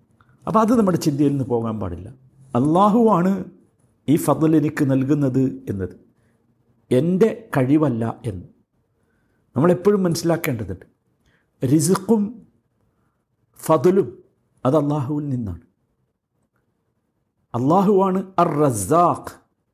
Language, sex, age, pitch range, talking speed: Malayalam, male, 60-79, 115-185 Hz, 75 wpm